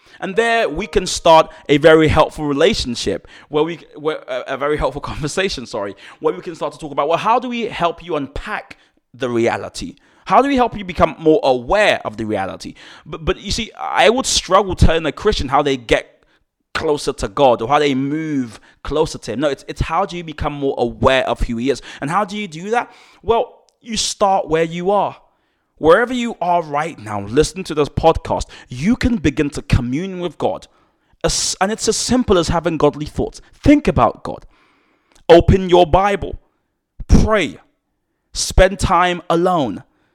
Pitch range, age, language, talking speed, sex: 140-195 Hz, 20-39, English, 190 wpm, male